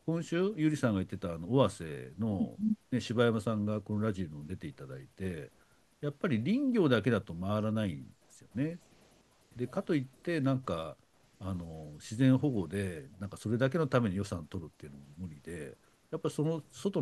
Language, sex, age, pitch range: Japanese, male, 60-79, 95-145 Hz